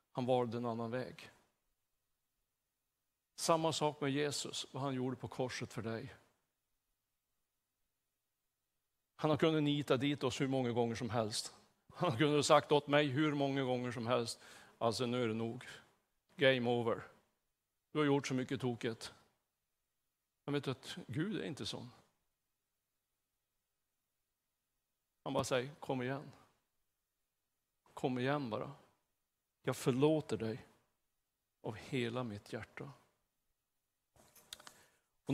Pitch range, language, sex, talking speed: 125-150 Hz, Swedish, male, 125 wpm